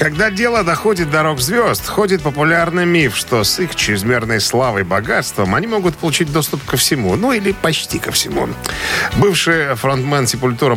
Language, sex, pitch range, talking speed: Russian, male, 105-145 Hz, 160 wpm